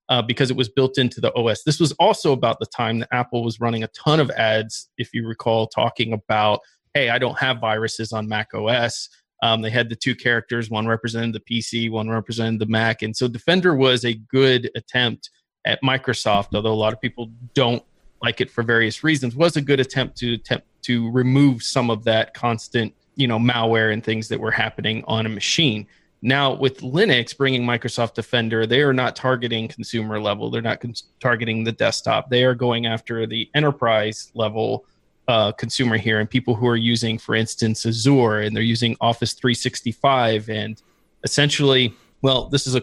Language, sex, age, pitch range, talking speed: English, male, 30-49, 110-130 Hz, 195 wpm